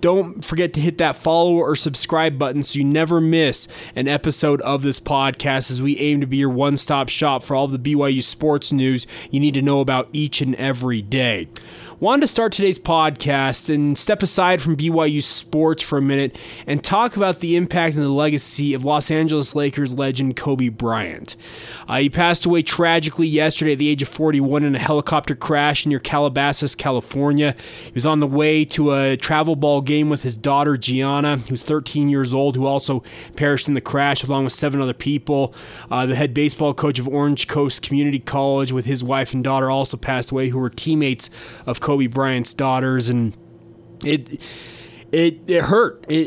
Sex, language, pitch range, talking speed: male, English, 135-155 Hz, 190 wpm